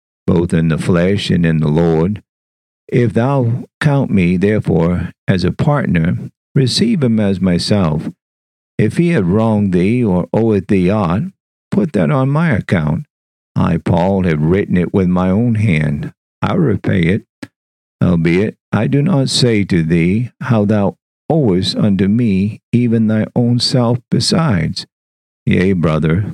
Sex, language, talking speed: male, English, 150 wpm